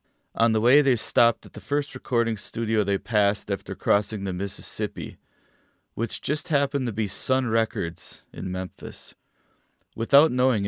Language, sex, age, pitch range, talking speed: English, male, 30-49, 100-120 Hz, 150 wpm